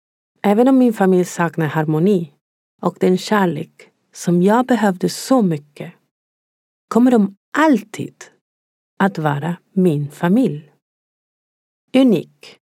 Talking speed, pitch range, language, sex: 105 wpm, 160-235 Hz, Swedish, female